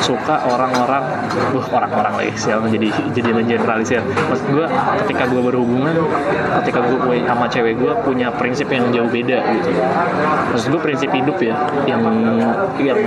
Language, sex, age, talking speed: Indonesian, male, 20-39, 140 wpm